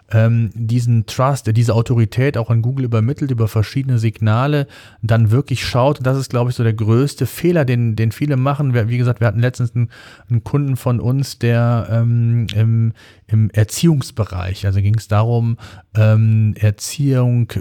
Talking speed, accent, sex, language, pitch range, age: 155 wpm, German, male, German, 110-130 Hz, 40-59